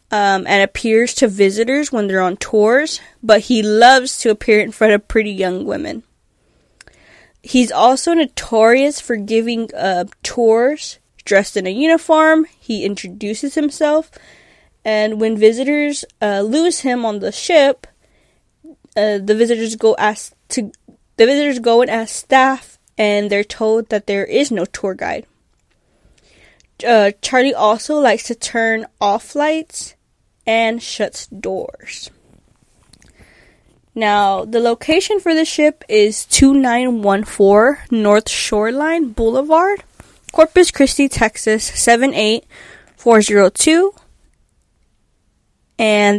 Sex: female